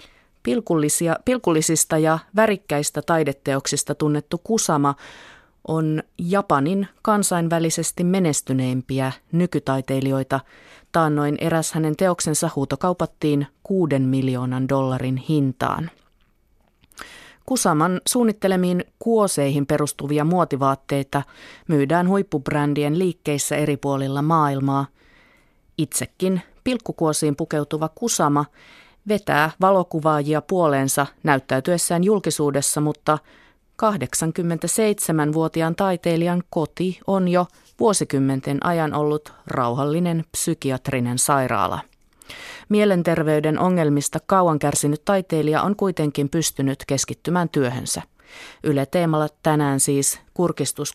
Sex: female